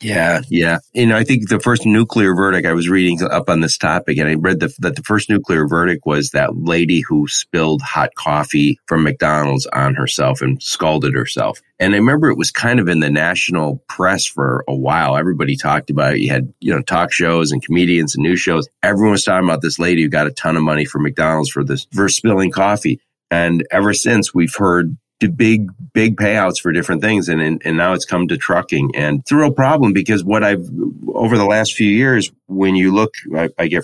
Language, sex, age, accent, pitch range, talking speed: English, male, 40-59, American, 80-105 Hz, 225 wpm